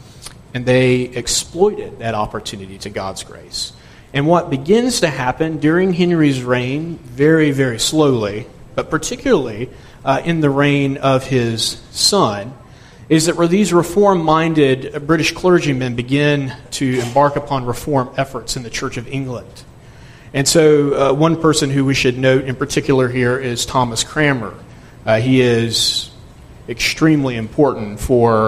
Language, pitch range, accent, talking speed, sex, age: English, 125-150 Hz, American, 140 wpm, male, 40-59